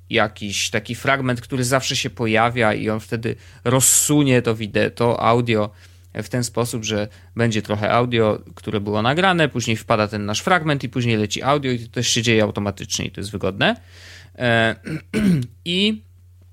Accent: native